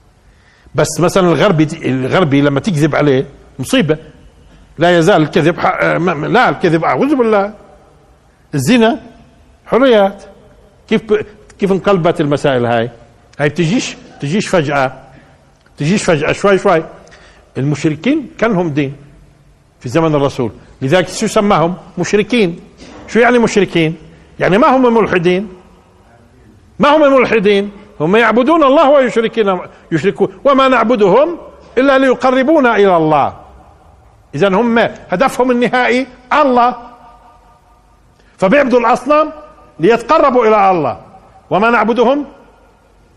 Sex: male